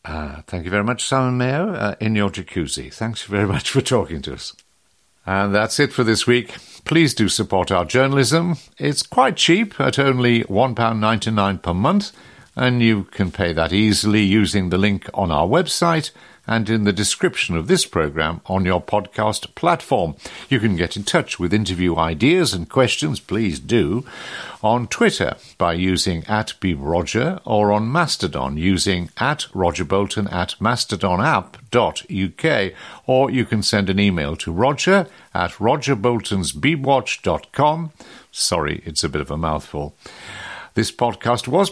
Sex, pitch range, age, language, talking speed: male, 90-130 Hz, 60-79, English, 155 wpm